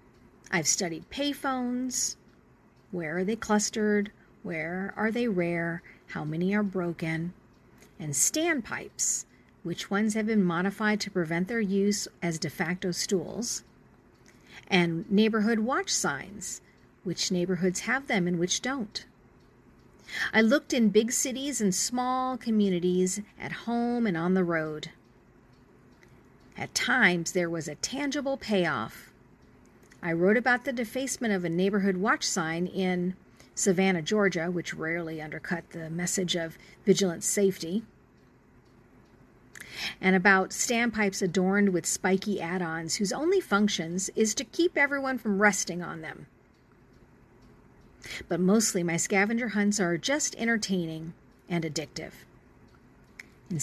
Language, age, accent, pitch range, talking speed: English, 50-69, American, 175-220 Hz, 125 wpm